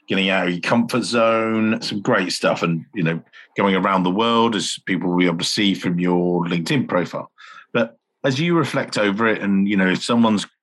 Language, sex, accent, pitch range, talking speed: English, male, British, 90-110 Hz, 215 wpm